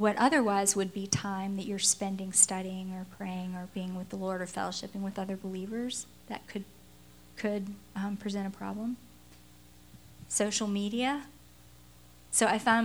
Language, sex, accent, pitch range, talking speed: English, female, American, 190-225 Hz, 155 wpm